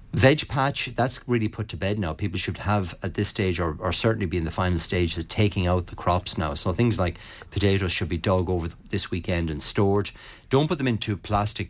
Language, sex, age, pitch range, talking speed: English, male, 30-49, 85-110 Hz, 230 wpm